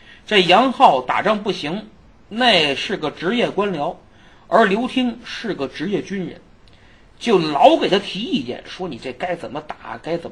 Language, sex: Chinese, male